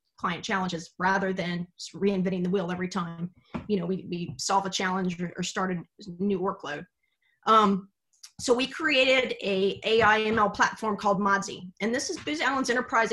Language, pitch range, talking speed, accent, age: English, 180-215 Hz, 170 wpm, American, 30-49